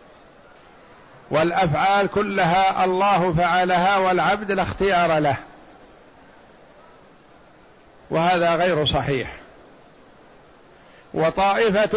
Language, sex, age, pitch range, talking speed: Arabic, male, 50-69, 170-195 Hz, 55 wpm